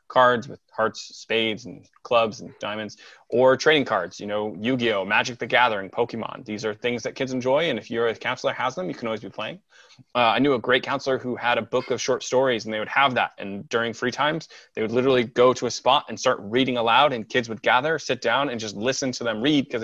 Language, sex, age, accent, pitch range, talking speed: English, male, 20-39, American, 115-140 Hz, 245 wpm